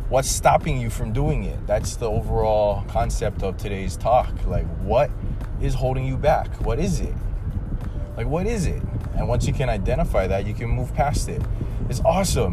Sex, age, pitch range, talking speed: male, 20-39, 90-110 Hz, 185 wpm